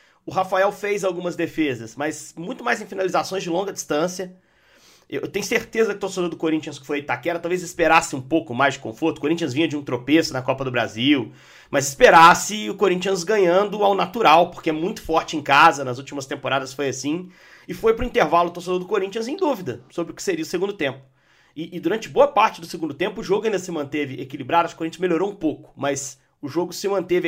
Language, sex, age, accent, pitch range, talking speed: Portuguese, male, 40-59, Brazilian, 145-195 Hz, 220 wpm